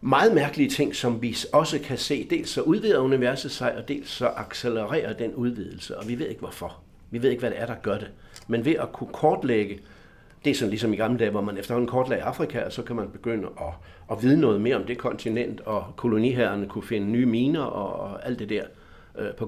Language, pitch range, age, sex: Danish, 105-145 Hz, 60-79, male